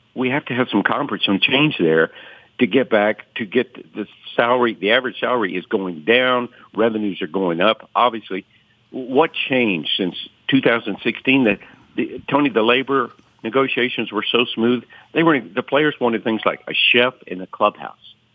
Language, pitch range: English, 90-120 Hz